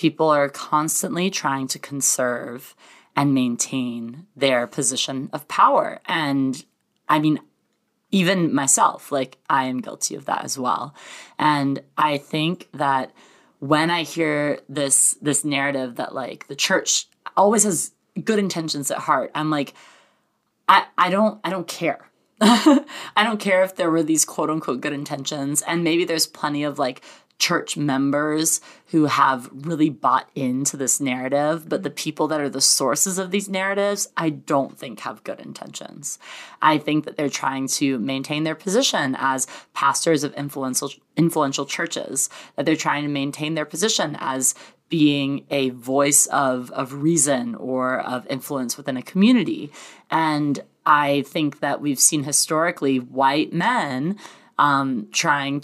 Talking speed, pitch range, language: 150 wpm, 135-165 Hz, English